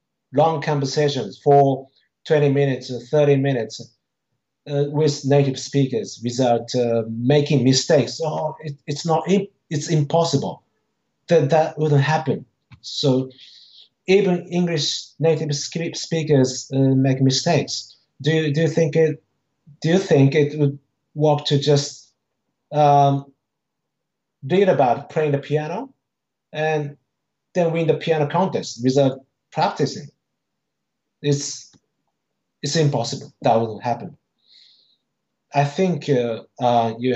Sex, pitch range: male, 130-155 Hz